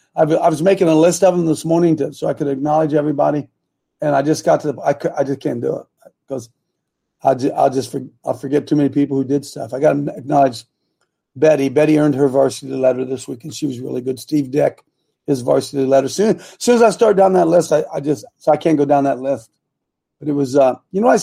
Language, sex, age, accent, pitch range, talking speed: English, male, 40-59, American, 140-190 Hz, 255 wpm